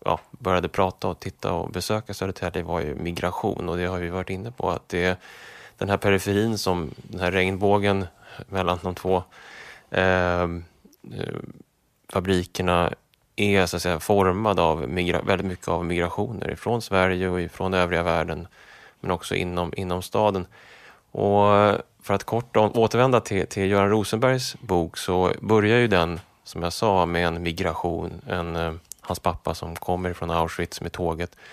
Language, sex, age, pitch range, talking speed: English, male, 20-39, 90-110 Hz, 160 wpm